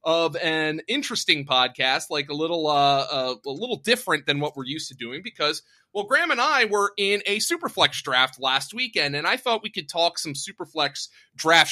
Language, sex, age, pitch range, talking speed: English, male, 30-49, 150-210 Hz, 200 wpm